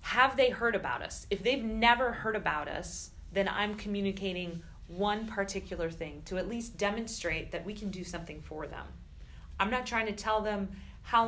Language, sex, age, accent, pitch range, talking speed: English, female, 30-49, American, 170-215 Hz, 185 wpm